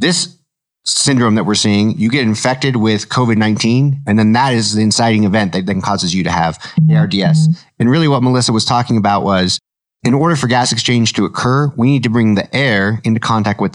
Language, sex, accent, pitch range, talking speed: English, male, American, 105-125 Hz, 210 wpm